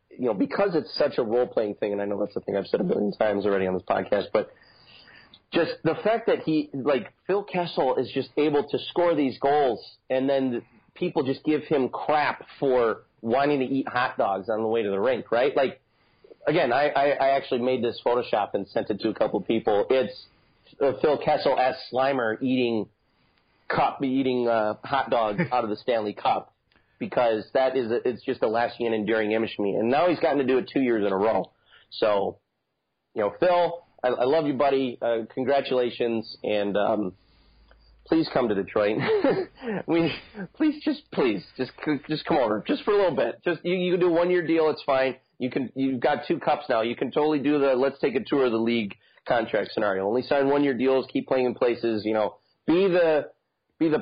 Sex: male